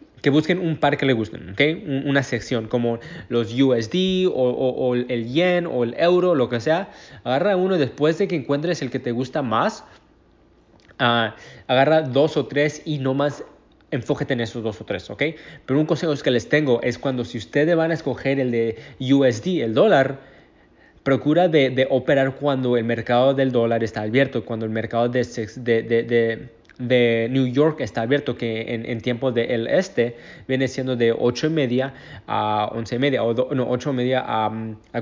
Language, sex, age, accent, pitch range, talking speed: Spanish, male, 20-39, Mexican, 120-145 Hz, 200 wpm